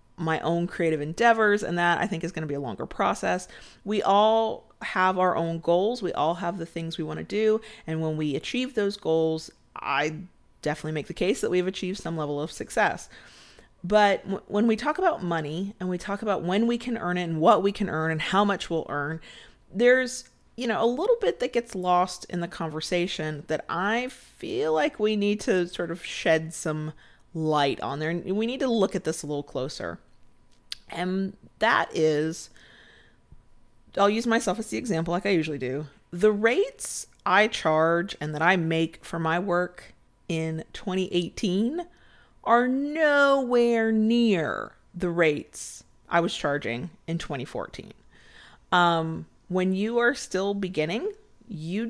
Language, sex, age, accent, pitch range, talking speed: English, female, 30-49, American, 165-220 Hz, 175 wpm